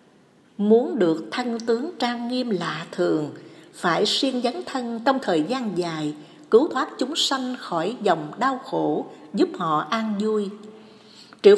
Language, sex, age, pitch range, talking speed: Vietnamese, female, 60-79, 190-285 Hz, 150 wpm